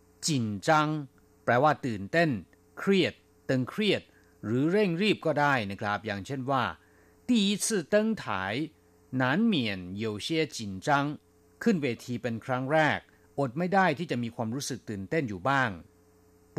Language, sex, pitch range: Thai, male, 100-155 Hz